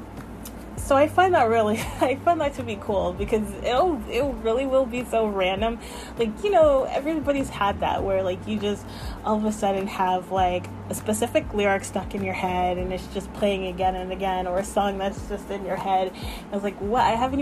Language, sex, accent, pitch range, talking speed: English, female, American, 185-220 Hz, 220 wpm